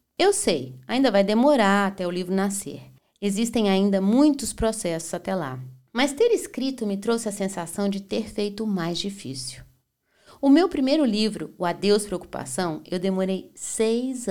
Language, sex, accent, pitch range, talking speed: Portuguese, female, Brazilian, 170-240 Hz, 160 wpm